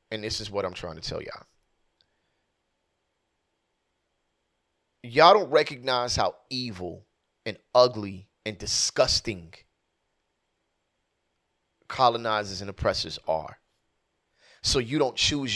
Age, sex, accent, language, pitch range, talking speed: 30-49, male, American, English, 100-135 Hz, 100 wpm